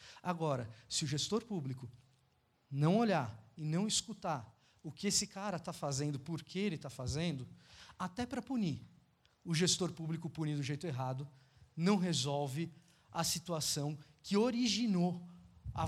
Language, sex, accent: Portuguese, male, Brazilian